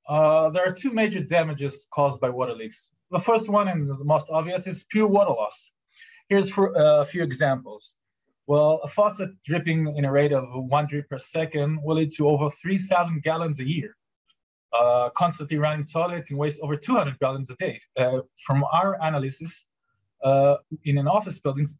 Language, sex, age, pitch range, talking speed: English, male, 20-39, 145-180 Hz, 180 wpm